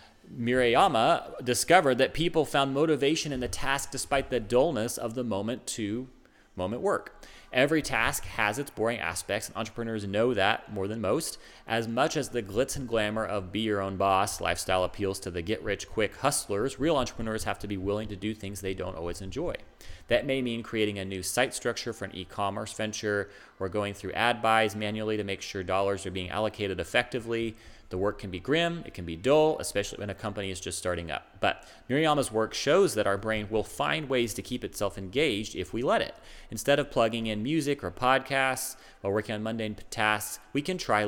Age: 30-49